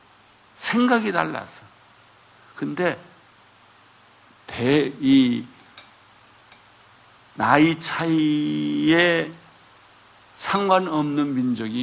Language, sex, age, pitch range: Korean, male, 60-79, 130-185 Hz